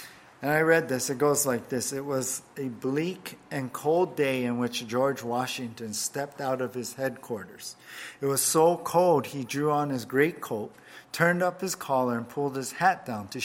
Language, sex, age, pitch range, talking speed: English, male, 50-69, 125-170 Hz, 195 wpm